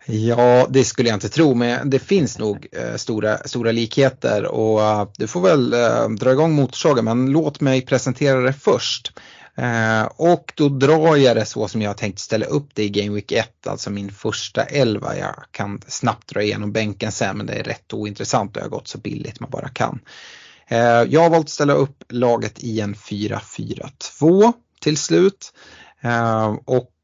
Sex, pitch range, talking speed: male, 105-135 Hz, 180 wpm